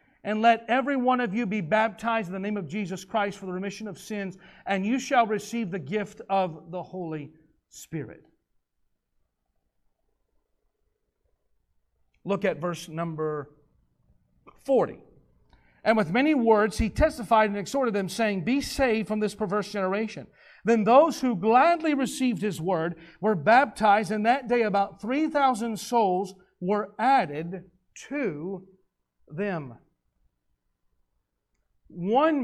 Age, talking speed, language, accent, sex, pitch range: 40-59, 130 wpm, English, American, male, 160-225 Hz